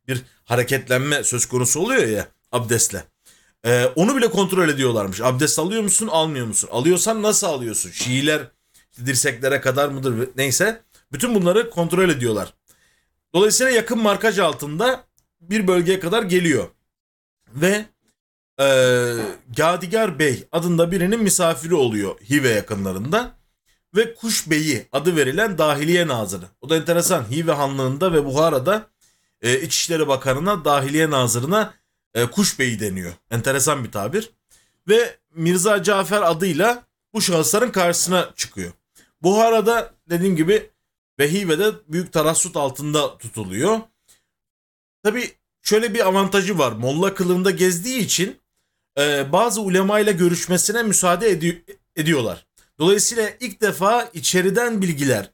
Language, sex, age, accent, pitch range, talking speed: Turkish, male, 40-59, native, 130-200 Hz, 120 wpm